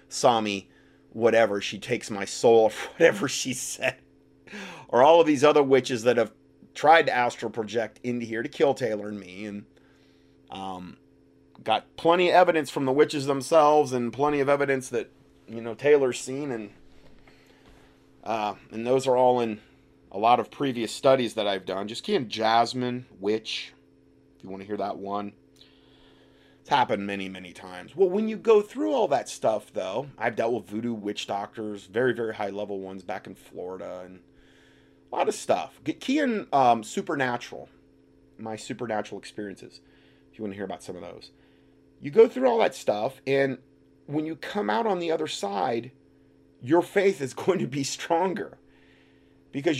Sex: male